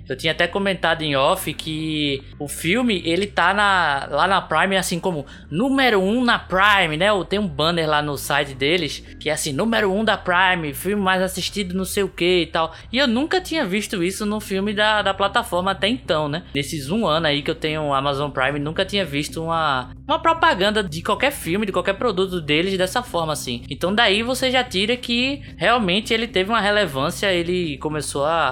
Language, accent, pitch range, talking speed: Portuguese, Brazilian, 155-220 Hz, 210 wpm